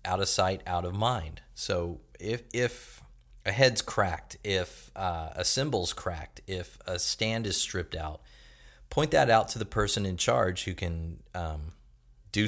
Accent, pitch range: American, 80-110 Hz